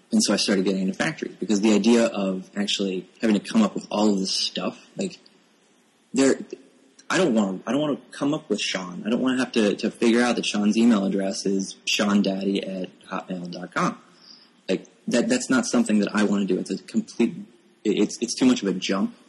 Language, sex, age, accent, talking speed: English, male, 20-39, American, 225 wpm